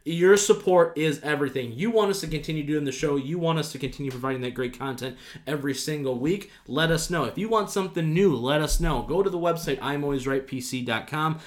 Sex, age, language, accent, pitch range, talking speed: male, 20-39, English, American, 140-170 Hz, 210 wpm